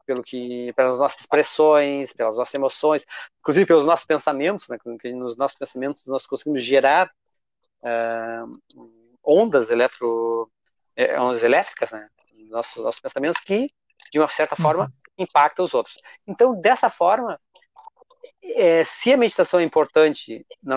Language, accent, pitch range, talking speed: Portuguese, Brazilian, 130-210 Hz, 140 wpm